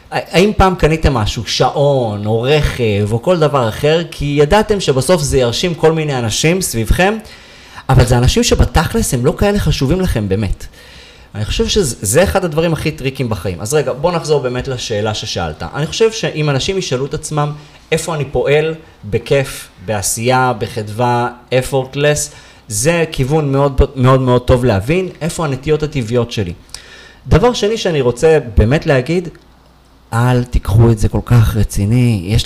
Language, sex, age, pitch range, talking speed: Hebrew, male, 30-49, 110-150 Hz, 155 wpm